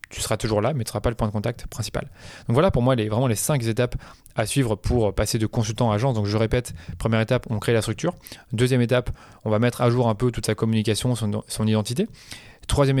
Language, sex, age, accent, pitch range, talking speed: French, male, 20-39, French, 110-130 Hz, 255 wpm